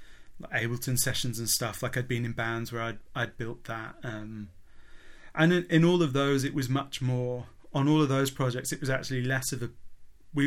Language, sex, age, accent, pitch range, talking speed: English, male, 30-49, British, 120-140 Hz, 210 wpm